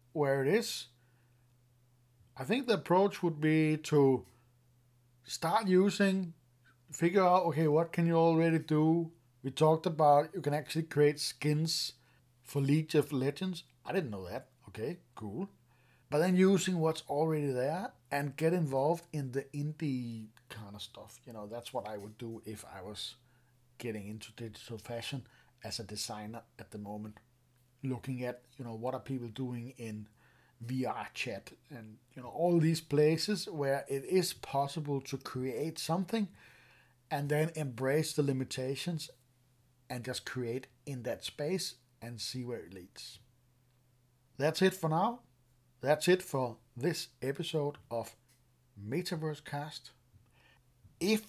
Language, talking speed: English, 145 wpm